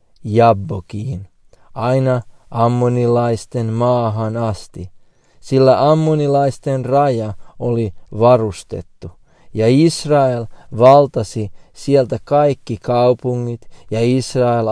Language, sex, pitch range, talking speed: Finnish, male, 105-125 Hz, 70 wpm